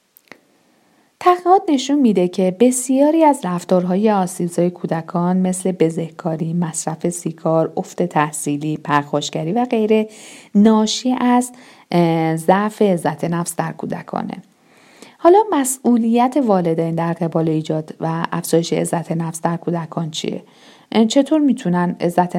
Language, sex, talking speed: Persian, female, 115 wpm